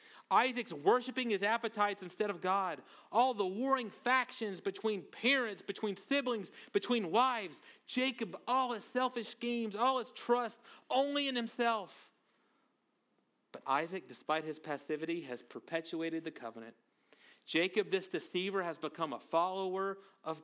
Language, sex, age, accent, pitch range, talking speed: English, male, 40-59, American, 145-215 Hz, 130 wpm